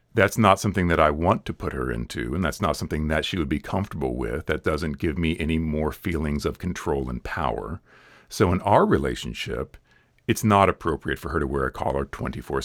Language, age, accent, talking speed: English, 50-69, American, 215 wpm